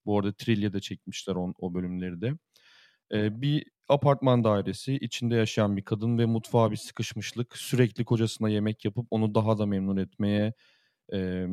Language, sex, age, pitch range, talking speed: Turkish, male, 30-49, 100-115 Hz, 155 wpm